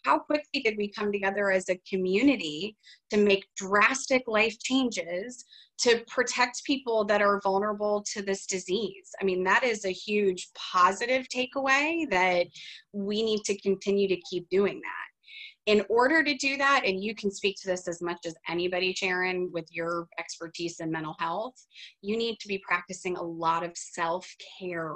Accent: American